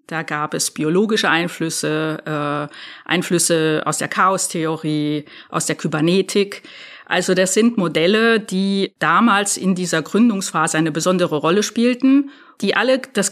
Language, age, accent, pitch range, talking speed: German, 50-69, German, 160-205 Hz, 130 wpm